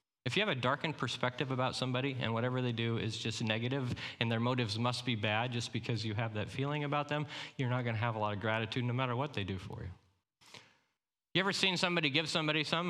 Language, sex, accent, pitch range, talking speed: English, male, American, 120-150 Hz, 235 wpm